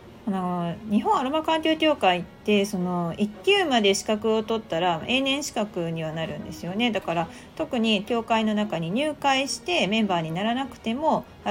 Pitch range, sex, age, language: 190-265 Hz, female, 40-59, Japanese